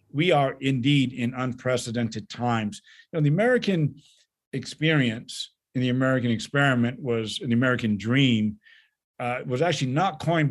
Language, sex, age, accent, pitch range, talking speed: English, male, 50-69, American, 120-150 Hz, 130 wpm